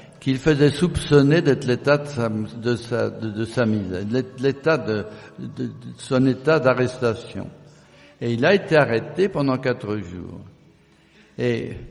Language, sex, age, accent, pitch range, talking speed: French, male, 60-79, French, 115-140 Hz, 145 wpm